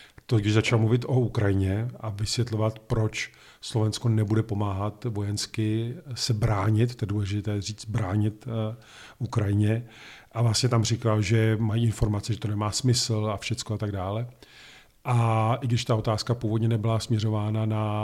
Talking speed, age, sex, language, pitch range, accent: 155 wpm, 40-59, male, Czech, 105-115 Hz, native